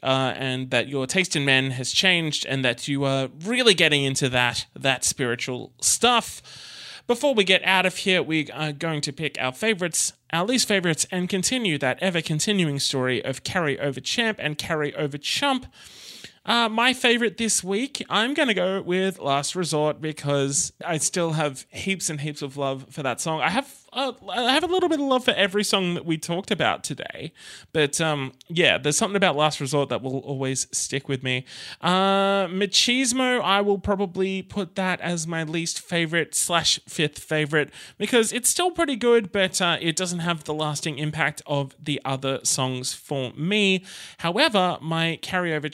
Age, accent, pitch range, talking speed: 20-39, Australian, 140-195 Hz, 185 wpm